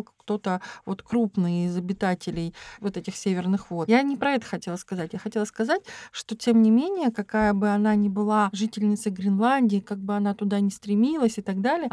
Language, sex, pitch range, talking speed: Russian, female, 205-245 Hz, 190 wpm